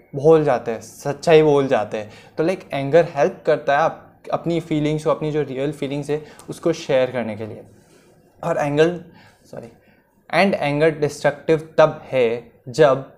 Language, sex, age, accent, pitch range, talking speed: Hindi, male, 20-39, native, 135-175 Hz, 165 wpm